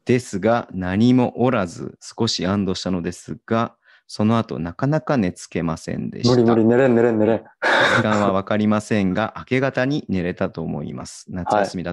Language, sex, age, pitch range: Japanese, male, 30-49, 95-120 Hz